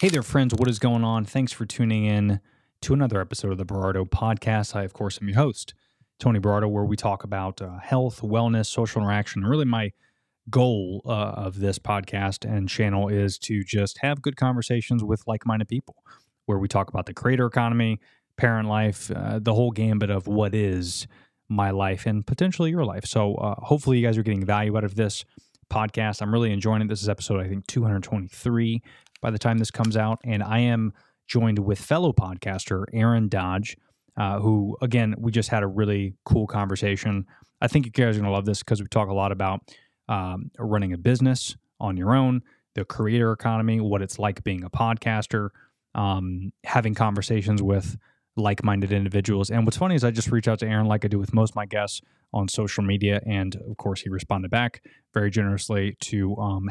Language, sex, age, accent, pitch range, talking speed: English, male, 20-39, American, 100-115 Hz, 200 wpm